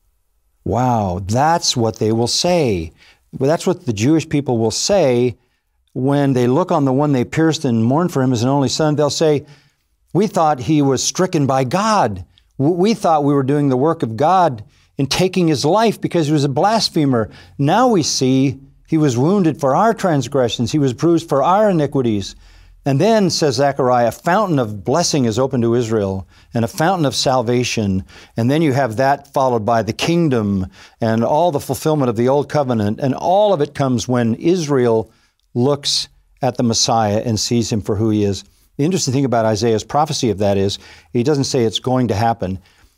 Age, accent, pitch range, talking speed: 50-69, American, 115-150 Hz, 195 wpm